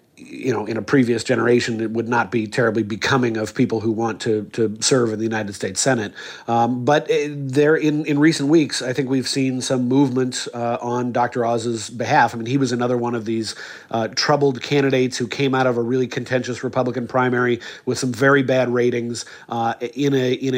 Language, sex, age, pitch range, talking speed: English, male, 40-59, 120-135 Hz, 205 wpm